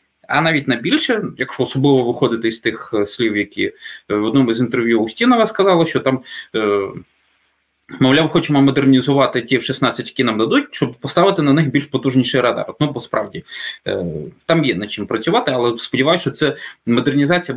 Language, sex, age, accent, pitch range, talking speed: Ukrainian, male, 20-39, native, 120-150 Hz, 160 wpm